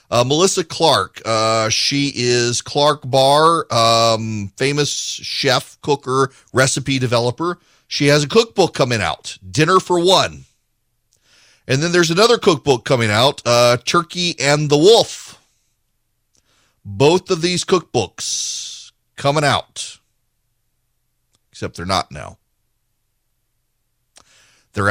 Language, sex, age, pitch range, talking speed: English, male, 40-59, 110-150 Hz, 110 wpm